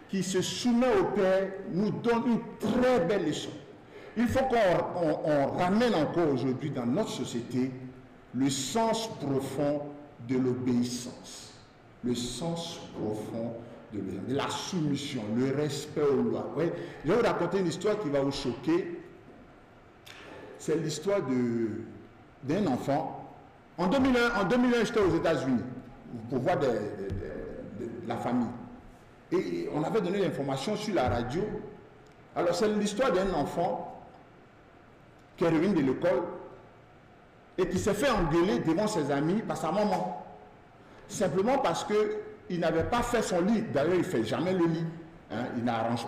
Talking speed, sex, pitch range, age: 150 wpm, male, 130-210 Hz, 50-69